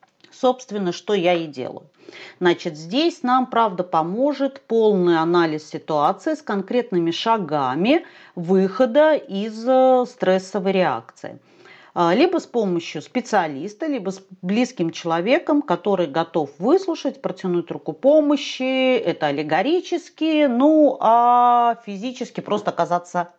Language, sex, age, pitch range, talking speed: Russian, female, 40-59, 175-255 Hz, 105 wpm